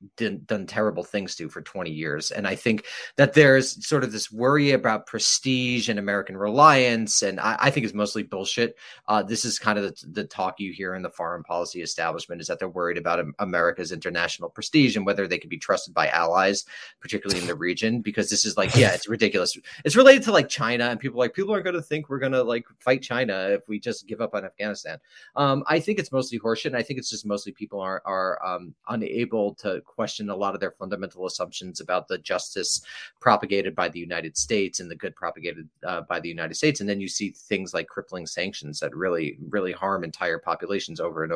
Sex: male